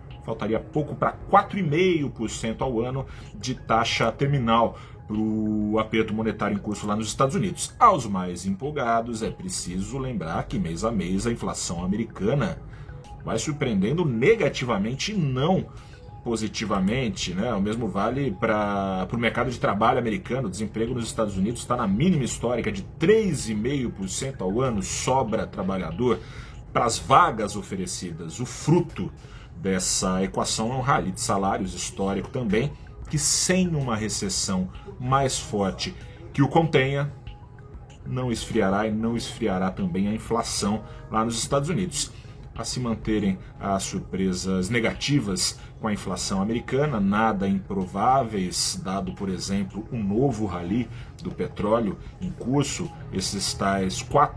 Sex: male